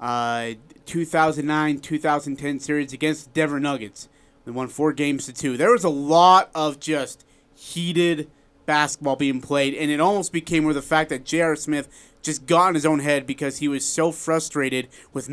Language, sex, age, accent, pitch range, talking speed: English, male, 30-49, American, 135-160 Hz, 175 wpm